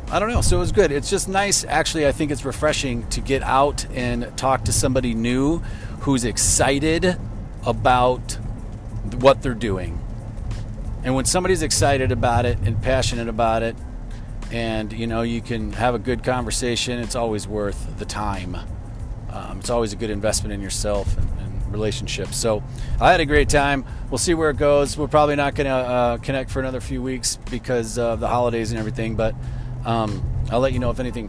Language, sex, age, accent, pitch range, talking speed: English, male, 40-59, American, 115-135 Hz, 190 wpm